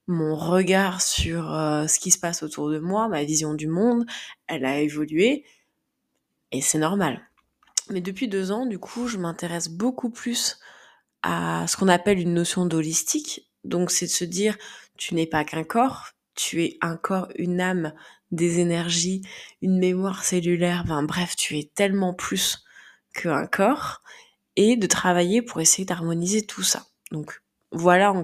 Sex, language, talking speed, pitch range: female, French, 165 wpm, 165-205 Hz